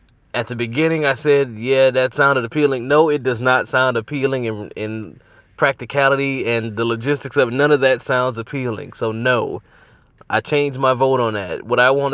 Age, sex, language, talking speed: 20-39, male, English, 195 wpm